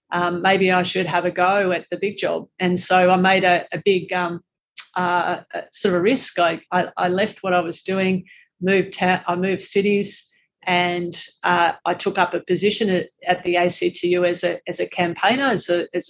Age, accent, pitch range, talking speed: 40-59, Australian, 175-190 Hz, 210 wpm